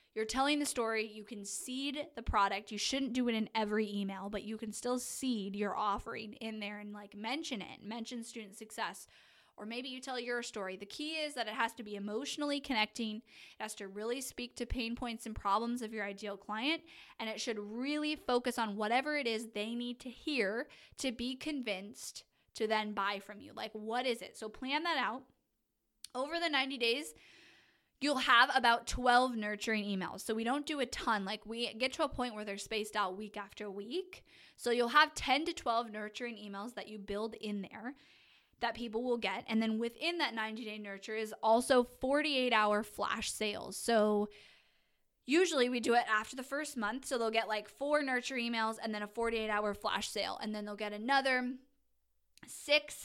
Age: 10-29